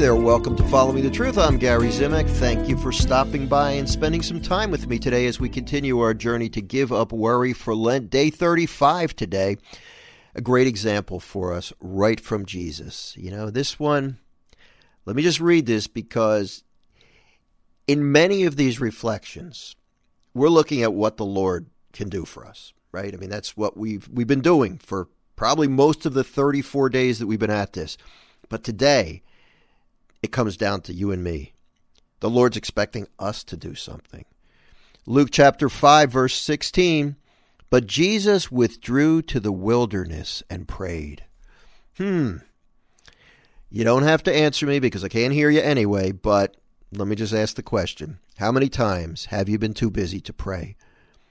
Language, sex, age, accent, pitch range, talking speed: English, male, 50-69, American, 100-140 Hz, 175 wpm